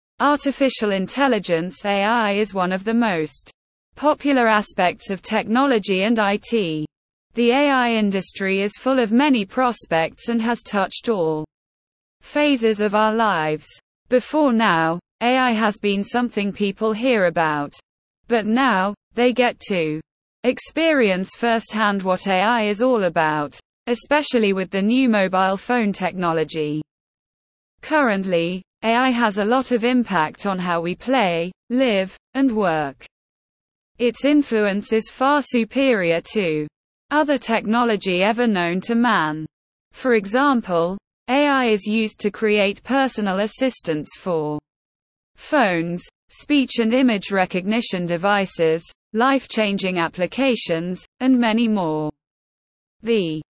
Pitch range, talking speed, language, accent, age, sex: 180-245 Hz, 120 wpm, English, British, 20-39, female